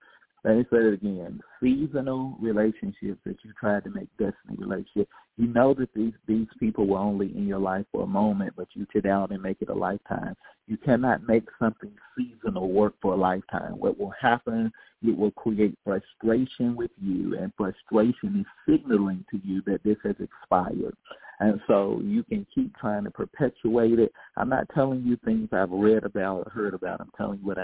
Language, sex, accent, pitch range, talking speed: English, male, American, 100-130 Hz, 195 wpm